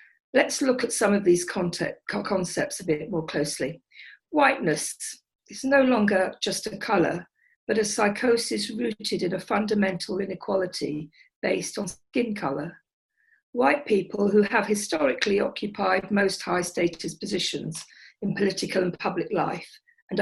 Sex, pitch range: female, 175-245 Hz